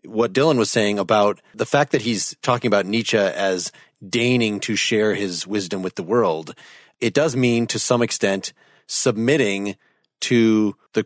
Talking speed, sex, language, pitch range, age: 165 wpm, male, English, 105-125 Hz, 30-49